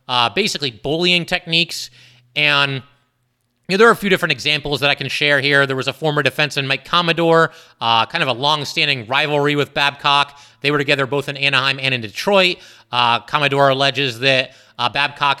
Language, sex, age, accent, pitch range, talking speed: English, male, 30-49, American, 130-165 Hz, 185 wpm